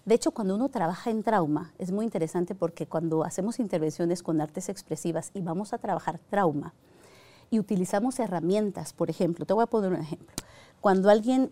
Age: 50-69